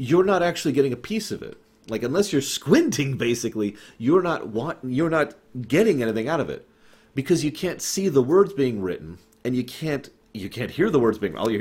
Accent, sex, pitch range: American, male, 105-160 Hz